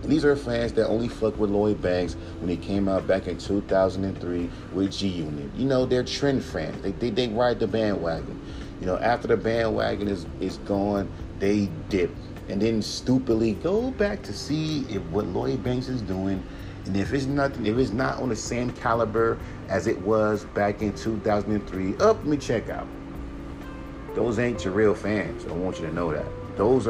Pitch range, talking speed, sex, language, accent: 90-125 Hz, 195 wpm, male, English, American